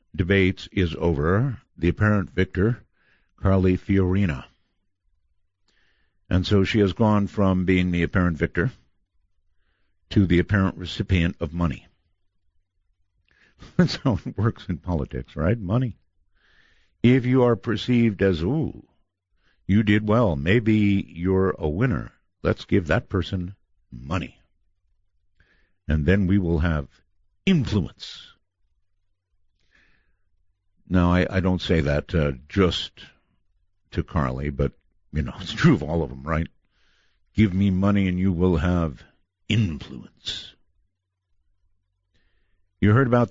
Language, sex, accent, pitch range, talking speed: English, male, American, 85-95 Hz, 120 wpm